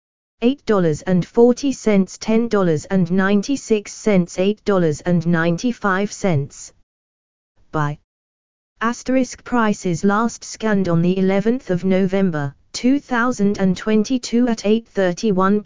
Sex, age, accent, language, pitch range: female, 20-39, British, English, 175-220 Hz